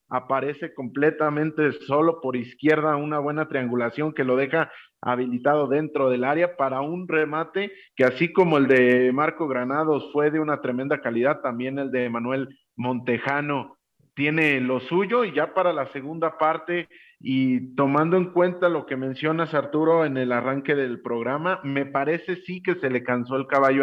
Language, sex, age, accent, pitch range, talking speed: Spanish, male, 40-59, Mexican, 130-155 Hz, 165 wpm